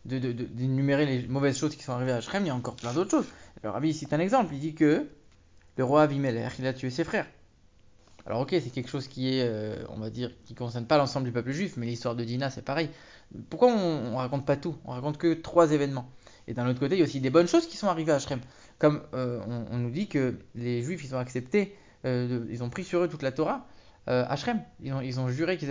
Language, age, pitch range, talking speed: English, 20-39, 125-165 Hz, 270 wpm